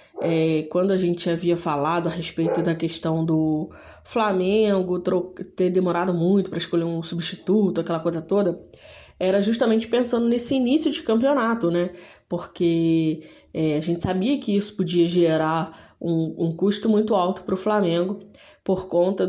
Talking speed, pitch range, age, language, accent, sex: 145 wpm, 165-200 Hz, 20-39, Portuguese, Brazilian, female